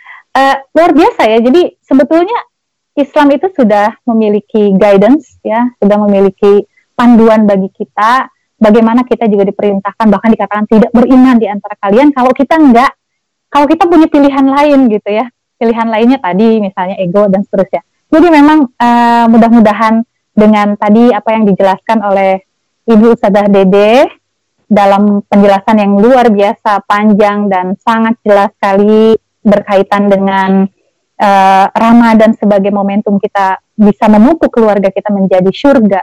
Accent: native